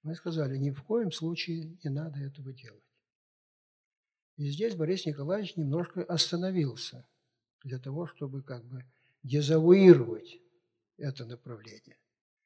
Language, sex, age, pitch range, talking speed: Russian, male, 60-79, 135-175 Hz, 115 wpm